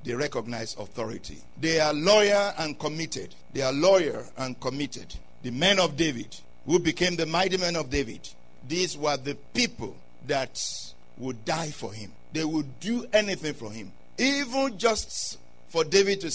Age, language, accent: 50-69, English, Nigerian